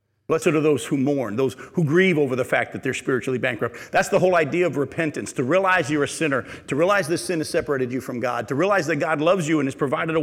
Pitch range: 135-175 Hz